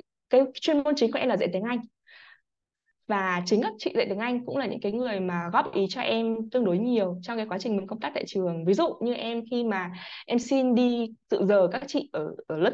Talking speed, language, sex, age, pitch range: 260 wpm, Vietnamese, female, 20-39, 190-250 Hz